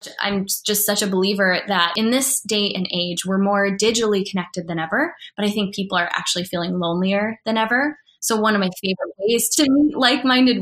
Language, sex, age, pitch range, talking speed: English, female, 10-29, 185-230 Hz, 205 wpm